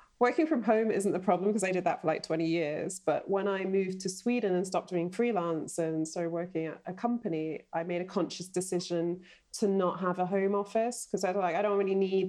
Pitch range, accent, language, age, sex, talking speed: 170-210 Hz, British, English, 20-39, female, 240 wpm